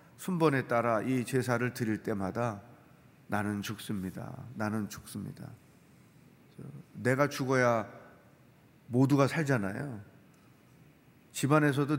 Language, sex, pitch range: Korean, male, 120-160 Hz